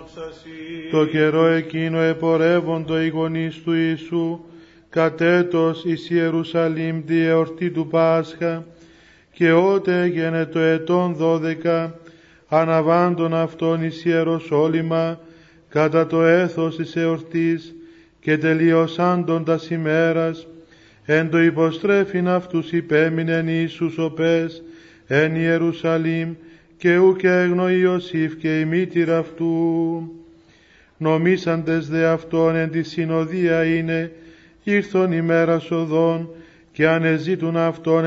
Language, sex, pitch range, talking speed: Greek, male, 160-165 Hz, 100 wpm